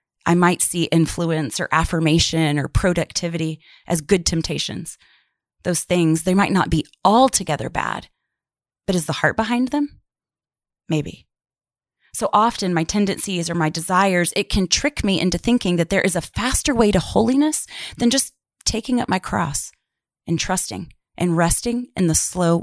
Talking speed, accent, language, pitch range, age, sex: 160 wpm, American, English, 165-195 Hz, 30-49, female